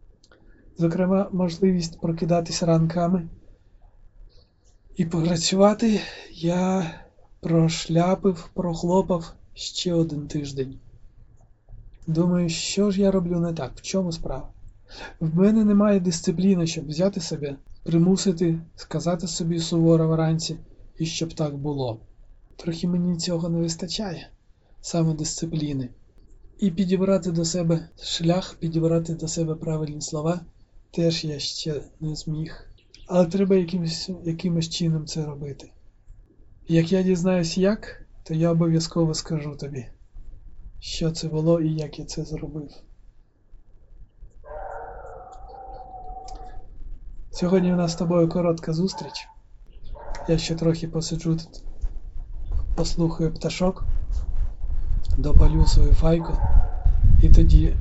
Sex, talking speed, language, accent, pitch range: male, 105 wpm, Ukrainian, native, 105-175 Hz